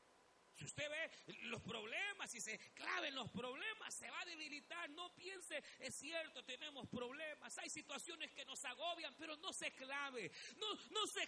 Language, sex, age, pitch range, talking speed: Spanish, male, 40-59, 265-370 Hz, 170 wpm